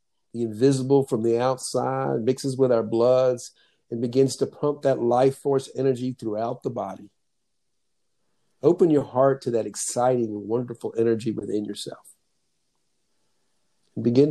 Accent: American